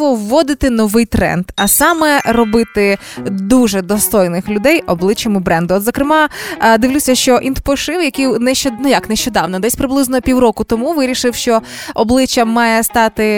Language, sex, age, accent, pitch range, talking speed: Ukrainian, female, 20-39, native, 210-255 Hz, 130 wpm